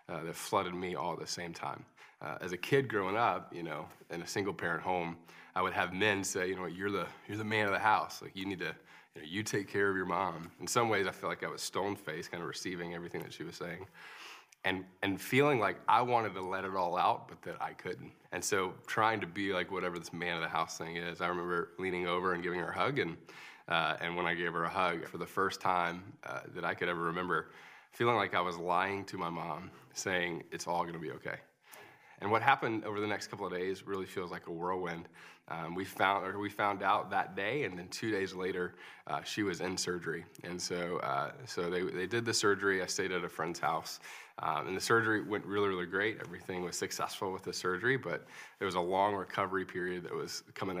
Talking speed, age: 250 wpm, 20-39